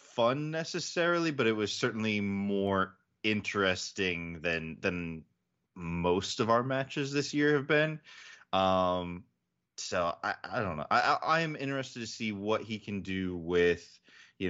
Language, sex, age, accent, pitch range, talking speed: English, male, 20-39, American, 85-105 Hz, 150 wpm